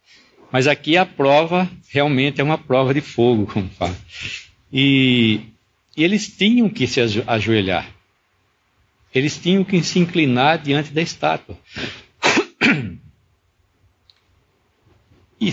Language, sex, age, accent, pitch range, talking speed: English, male, 60-79, Brazilian, 115-180 Hz, 100 wpm